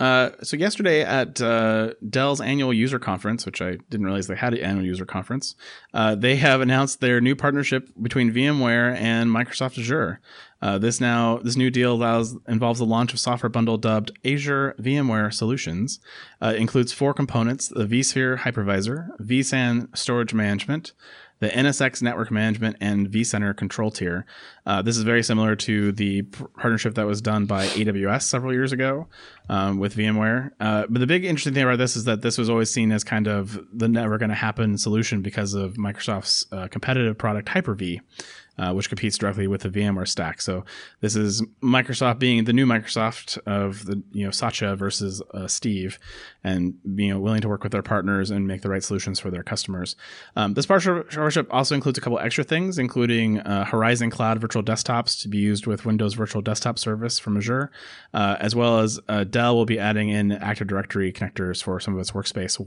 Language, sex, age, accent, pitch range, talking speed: English, male, 30-49, American, 100-125 Hz, 190 wpm